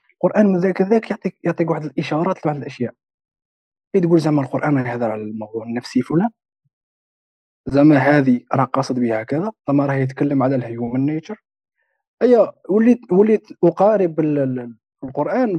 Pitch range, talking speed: 130-170 Hz, 135 wpm